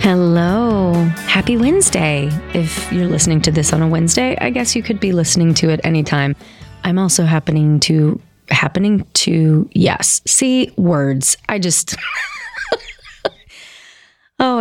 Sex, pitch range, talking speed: female, 155-185 Hz, 130 wpm